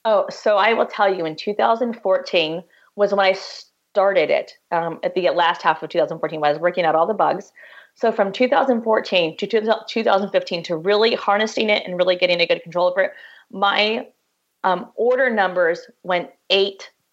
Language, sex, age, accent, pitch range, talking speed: English, female, 30-49, American, 175-210 Hz, 175 wpm